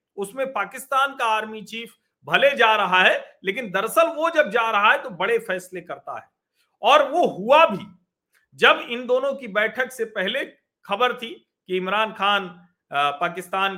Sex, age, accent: male, 40-59, native